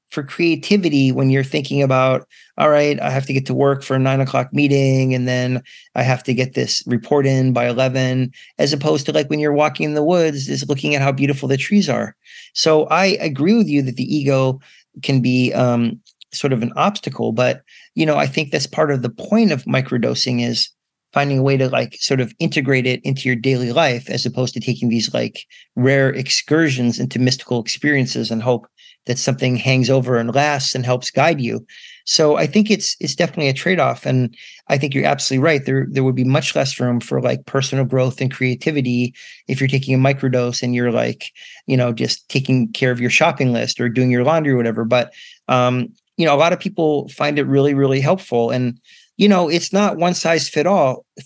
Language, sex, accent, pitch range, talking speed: English, male, American, 125-150 Hz, 220 wpm